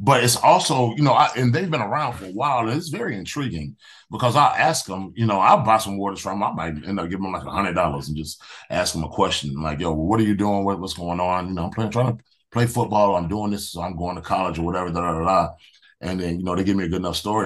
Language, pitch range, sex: English, 80-100 Hz, male